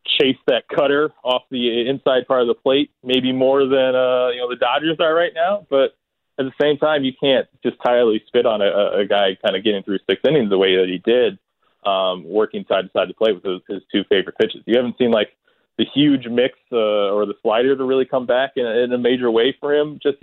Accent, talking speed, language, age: American, 245 wpm, English, 20-39